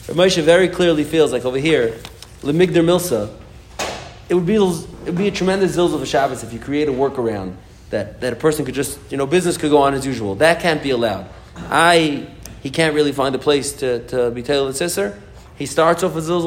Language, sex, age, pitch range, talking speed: English, male, 30-49, 120-155 Hz, 225 wpm